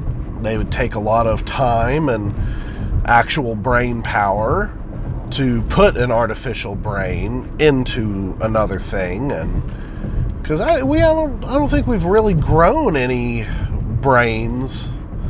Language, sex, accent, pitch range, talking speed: English, male, American, 105-140 Hz, 125 wpm